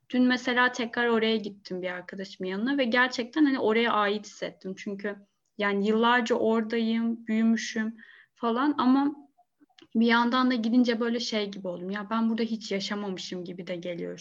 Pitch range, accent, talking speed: 200-235 Hz, native, 155 wpm